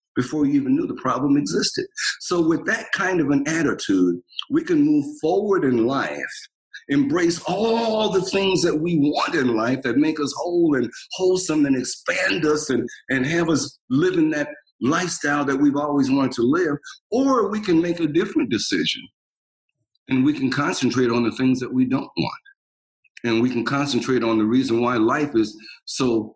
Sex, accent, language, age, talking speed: male, American, English, 50-69, 185 wpm